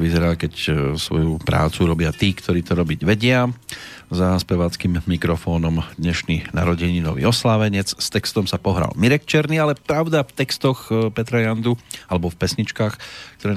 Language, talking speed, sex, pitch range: Slovak, 140 wpm, male, 90-110 Hz